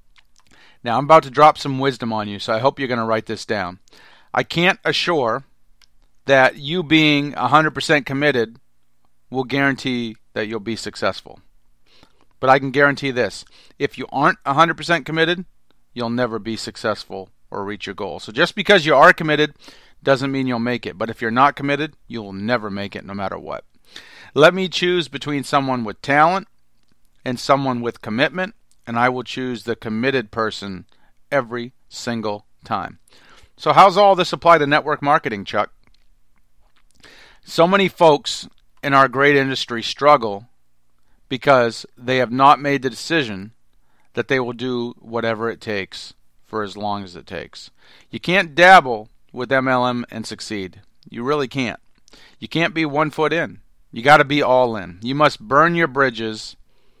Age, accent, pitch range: 40-59, American, 110-145 Hz